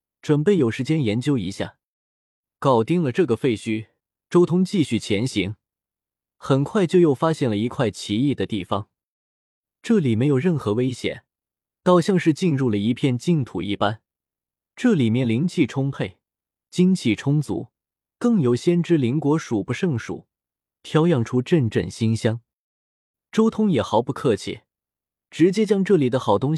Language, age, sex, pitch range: Chinese, 20-39, male, 110-170 Hz